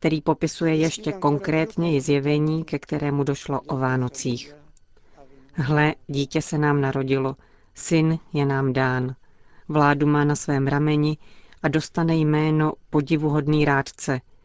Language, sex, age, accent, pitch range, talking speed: Czech, female, 40-59, native, 135-155 Hz, 120 wpm